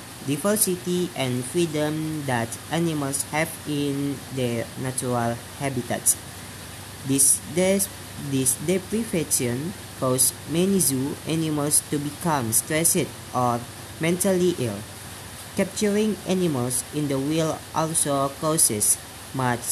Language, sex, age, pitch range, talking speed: Indonesian, female, 20-39, 125-155 Hz, 95 wpm